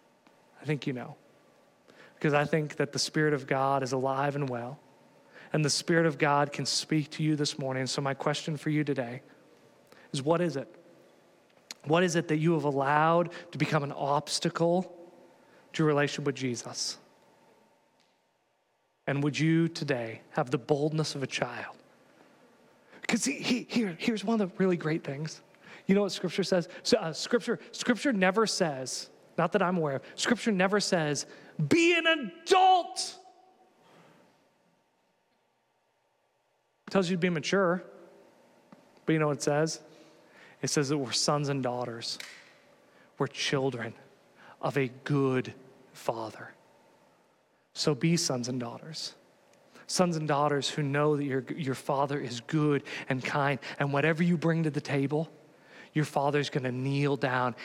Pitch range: 140-175 Hz